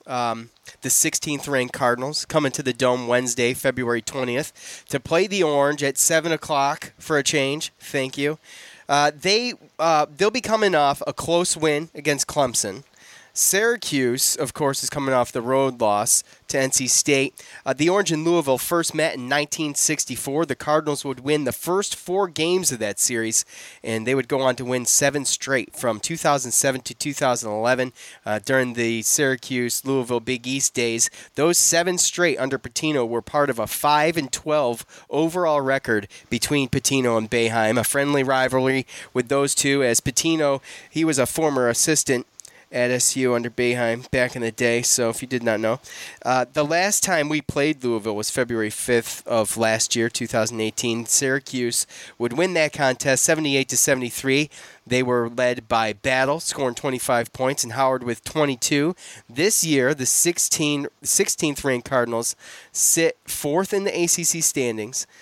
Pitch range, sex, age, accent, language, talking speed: 125-150 Hz, male, 30-49, American, English, 160 wpm